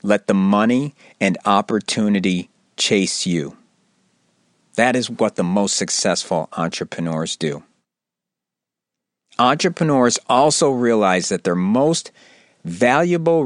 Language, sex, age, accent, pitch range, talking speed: English, male, 50-69, American, 100-155 Hz, 100 wpm